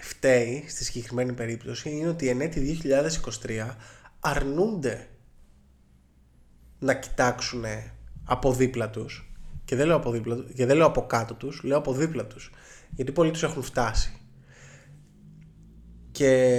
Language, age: Greek, 20-39